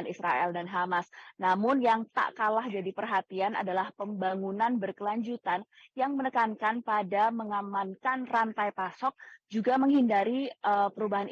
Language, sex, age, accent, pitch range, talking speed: Indonesian, female, 20-39, native, 185-220 Hz, 110 wpm